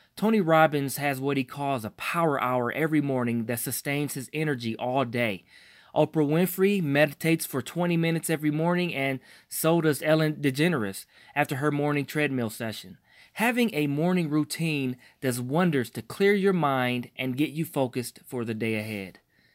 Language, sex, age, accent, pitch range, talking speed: English, male, 20-39, American, 125-165 Hz, 165 wpm